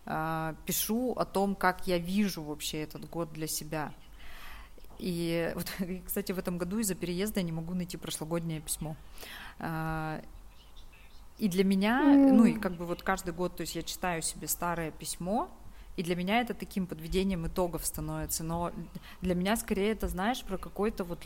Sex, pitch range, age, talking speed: female, 165-200 Hz, 30-49, 165 wpm